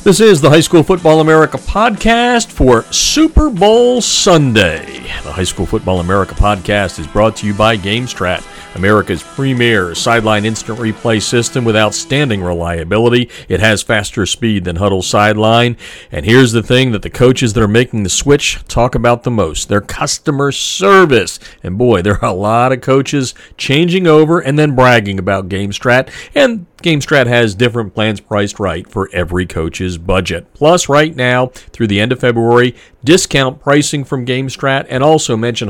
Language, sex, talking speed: English, male, 170 wpm